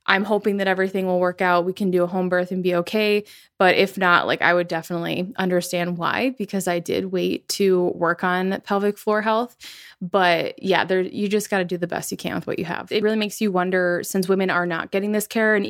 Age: 20-39